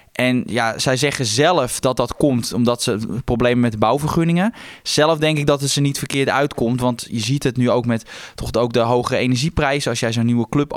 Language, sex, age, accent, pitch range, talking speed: Dutch, male, 20-39, Dutch, 120-145 Hz, 225 wpm